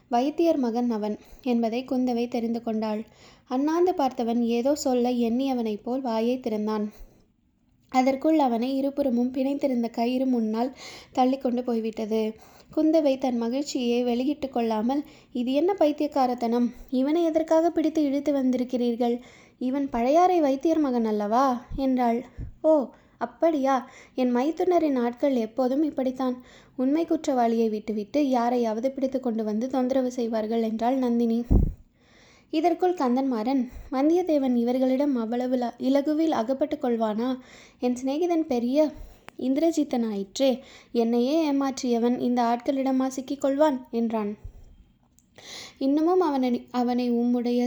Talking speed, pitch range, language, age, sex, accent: 105 wpm, 240-280 Hz, Tamil, 20-39, female, native